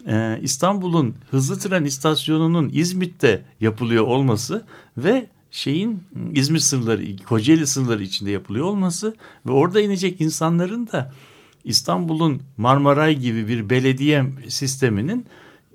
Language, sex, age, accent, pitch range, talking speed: Turkish, male, 60-79, native, 110-160 Hz, 105 wpm